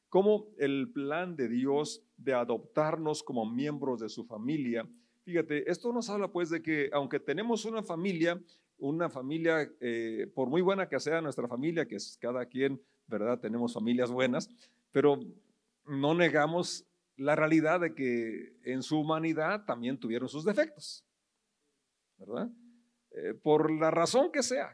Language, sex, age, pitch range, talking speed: Spanish, male, 50-69, 140-205 Hz, 150 wpm